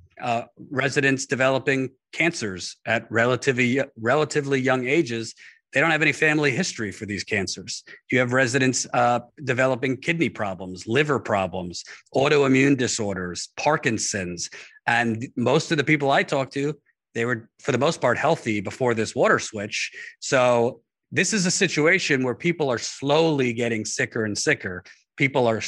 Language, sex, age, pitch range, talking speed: English, male, 40-59, 110-140 Hz, 150 wpm